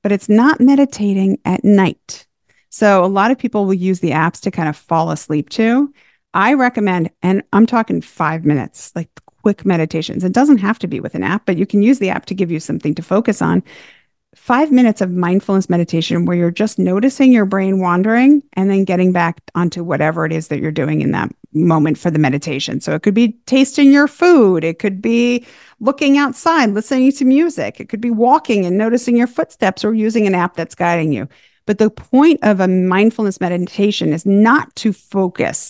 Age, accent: 40-59, American